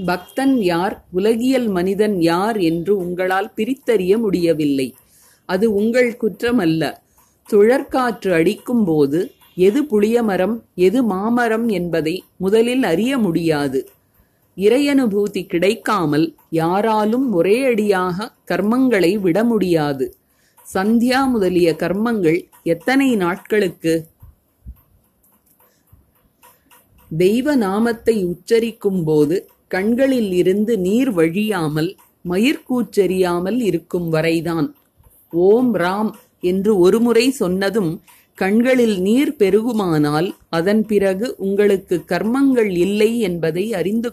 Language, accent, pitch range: Tamil, native, 175-230 Hz